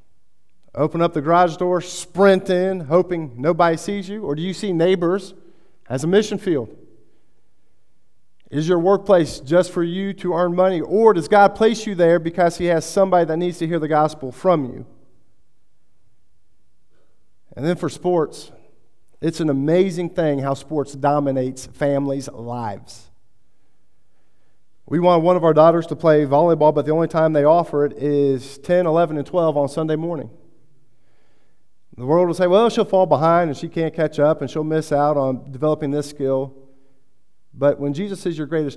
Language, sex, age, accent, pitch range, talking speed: English, male, 40-59, American, 140-175 Hz, 170 wpm